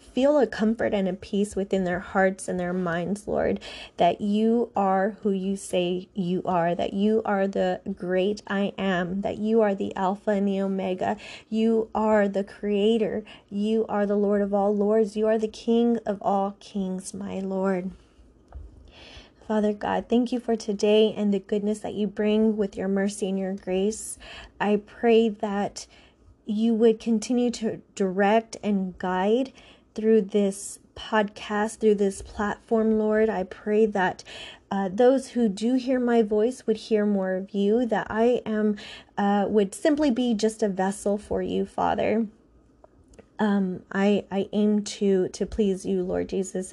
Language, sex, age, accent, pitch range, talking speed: English, female, 20-39, American, 190-220 Hz, 165 wpm